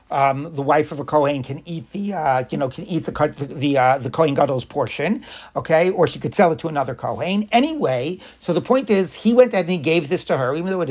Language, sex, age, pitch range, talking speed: English, male, 60-79, 140-195 Hz, 255 wpm